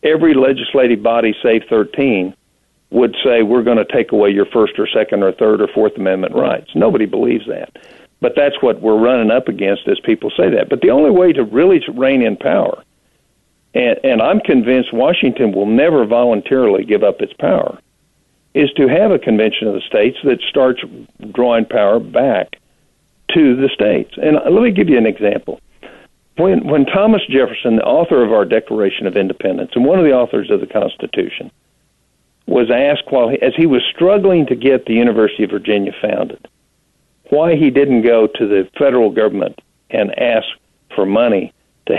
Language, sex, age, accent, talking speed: English, male, 50-69, American, 180 wpm